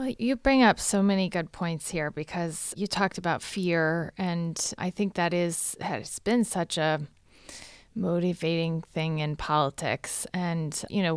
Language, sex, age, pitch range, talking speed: English, female, 30-49, 165-200 Hz, 160 wpm